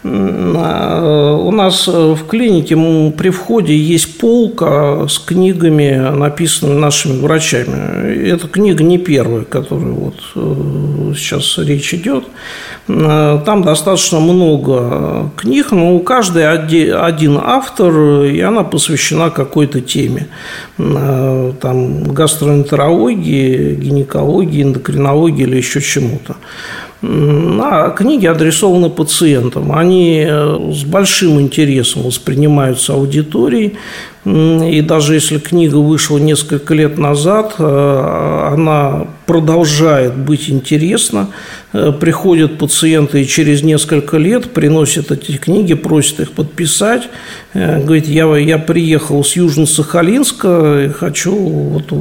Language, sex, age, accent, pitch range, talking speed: Russian, male, 50-69, native, 145-170 Hz, 95 wpm